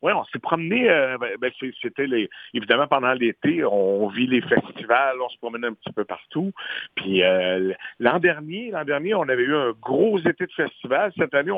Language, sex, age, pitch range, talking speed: French, male, 60-79, 120-160 Hz, 190 wpm